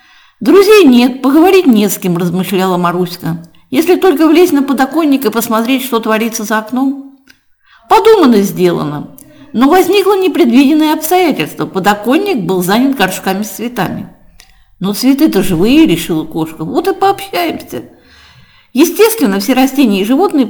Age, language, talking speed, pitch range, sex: 50-69, Russian, 130 wpm, 180-290 Hz, female